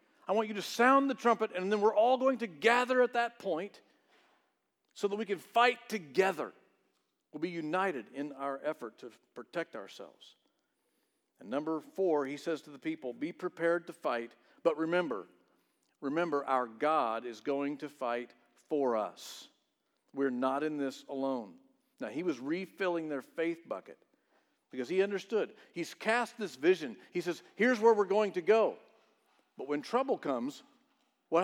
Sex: male